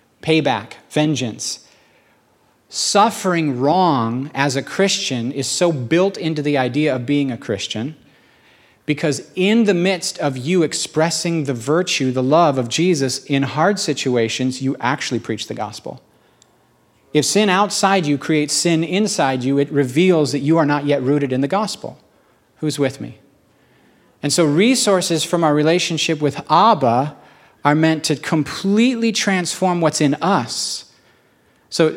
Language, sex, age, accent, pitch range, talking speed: English, male, 40-59, American, 130-170 Hz, 145 wpm